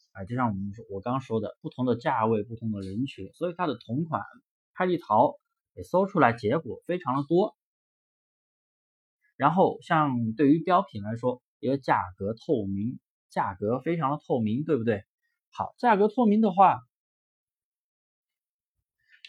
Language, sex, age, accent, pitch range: Chinese, male, 20-39, native, 120-175 Hz